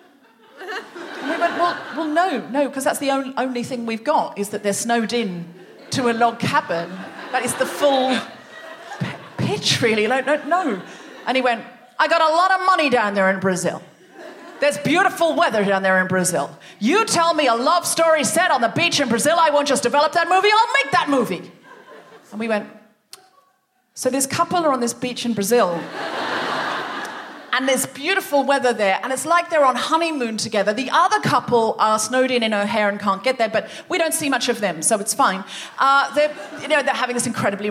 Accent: British